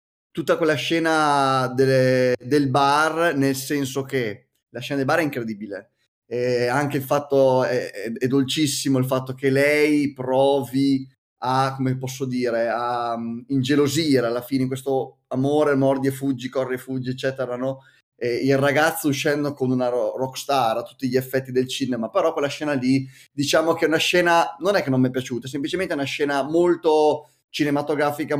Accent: native